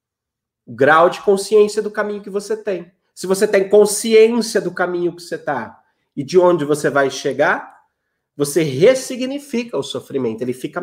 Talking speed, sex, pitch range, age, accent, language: 160 wpm, male, 155-205 Hz, 30-49, Brazilian, Portuguese